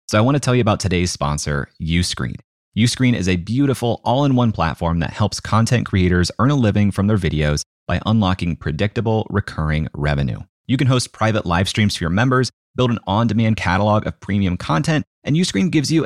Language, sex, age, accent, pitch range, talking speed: English, male, 30-49, American, 85-120 Hz, 190 wpm